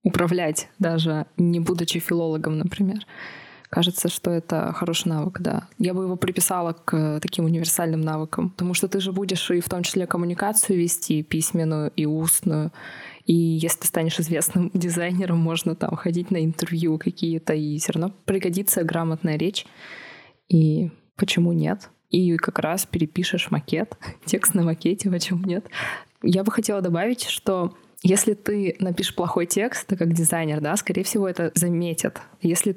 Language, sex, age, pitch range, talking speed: Russian, female, 20-39, 165-190 Hz, 155 wpm